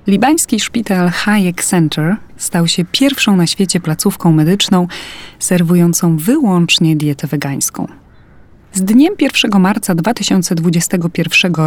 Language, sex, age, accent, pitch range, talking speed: Polish, female, 30-49, native, 165-200 Hz, 105 wpm